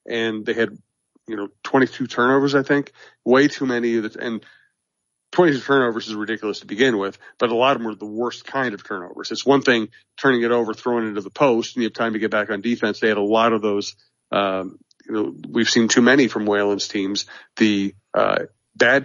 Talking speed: 225 wpm